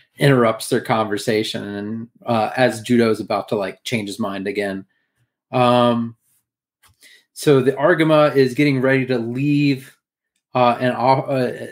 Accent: American